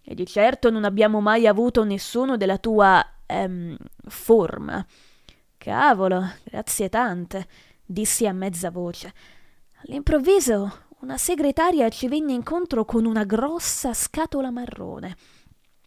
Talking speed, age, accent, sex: 115 wpm, 20-39, native, female